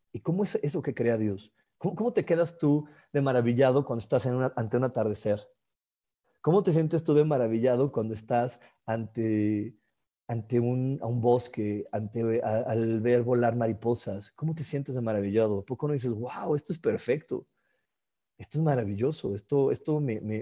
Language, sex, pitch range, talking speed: Spanish, male, 110-145 Hz, 180 wpm